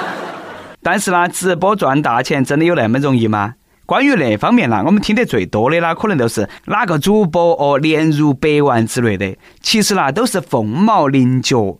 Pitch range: 125-195 Hz